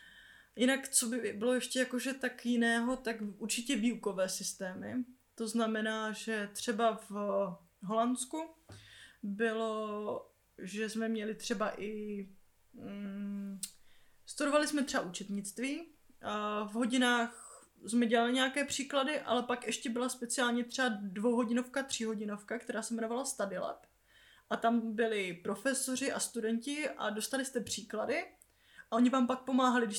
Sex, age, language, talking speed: female, 20-39, Czech, 130 wpm